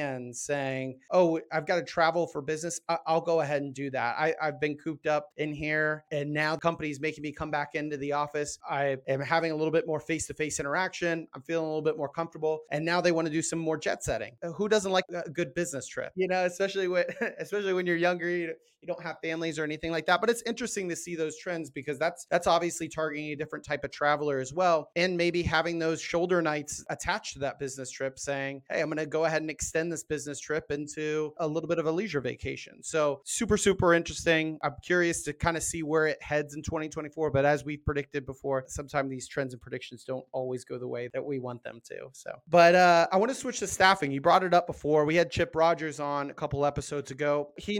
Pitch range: 145-170 Hz